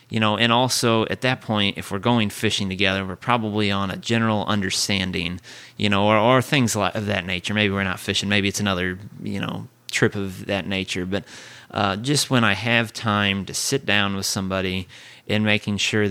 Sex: male